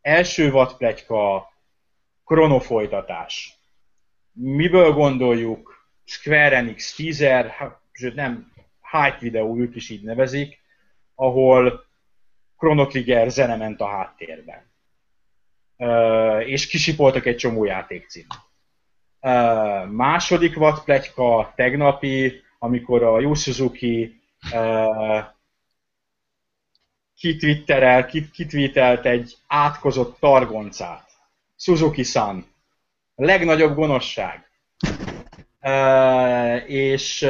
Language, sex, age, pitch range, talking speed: Hungarian, male, 30-49, 115-145 Hz, 70 wpm